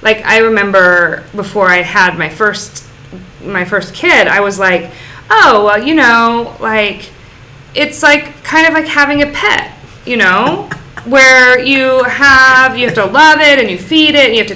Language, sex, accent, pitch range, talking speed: English, female, American, 180-270 Hz, 180 wpm